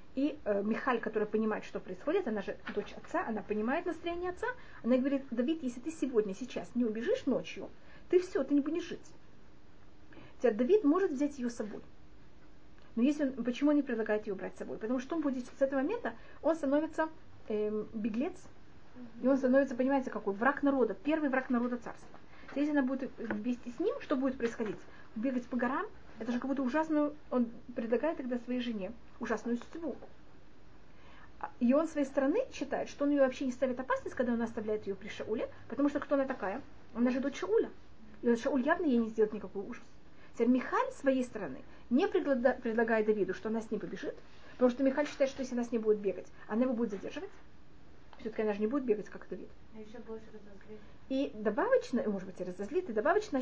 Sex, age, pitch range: female, 30-49, 225-285 Hz